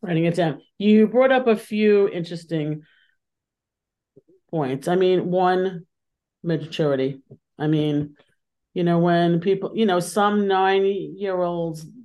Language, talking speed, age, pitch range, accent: English, 120 wpm, 40-59, 160-195 Hz, American